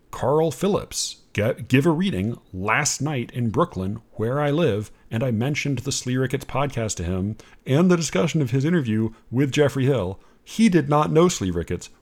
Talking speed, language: 180 wpm, English